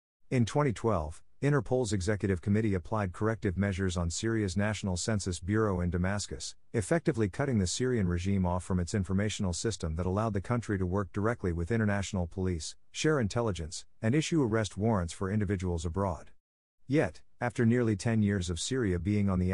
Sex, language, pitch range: male, English, 90-110 Hz